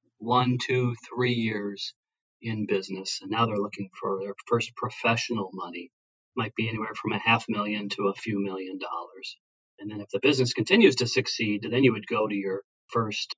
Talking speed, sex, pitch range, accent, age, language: 190 wpm, male, 100-125 Hz, American, 40-59, English